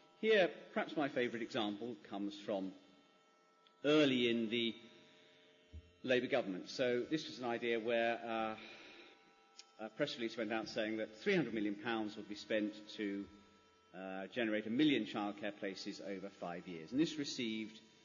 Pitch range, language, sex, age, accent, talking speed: 100-140 Hz, English, male, 40-59, British, 145 wpm